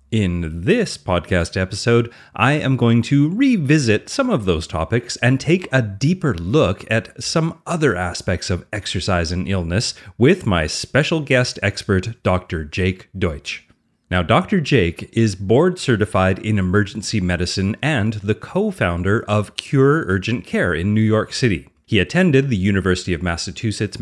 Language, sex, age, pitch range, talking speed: English, male, 30-49, 95-140 Hz, 150 wpm